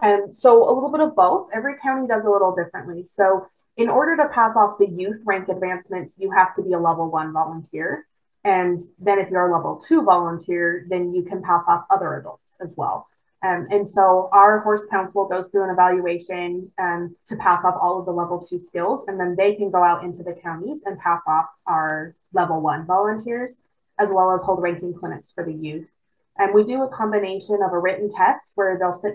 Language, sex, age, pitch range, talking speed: English, female, 20-39, 175-205 Hz, 215 wpm